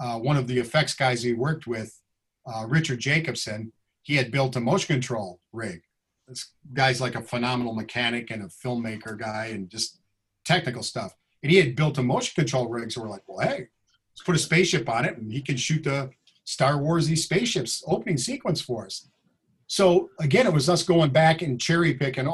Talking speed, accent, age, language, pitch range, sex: 200 wpm, American, 40-59, English, 115-150 Hz, male